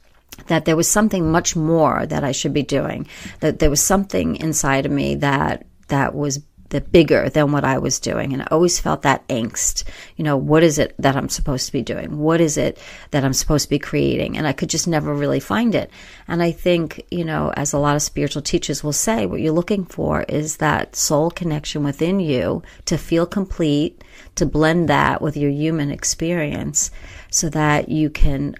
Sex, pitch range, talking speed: female, 140-160 Hz, 210 wpm